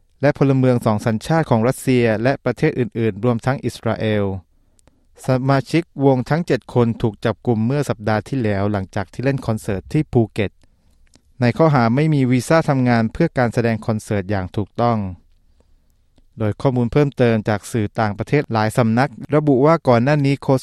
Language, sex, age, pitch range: Thai, male, 20-39, 105-130 Hz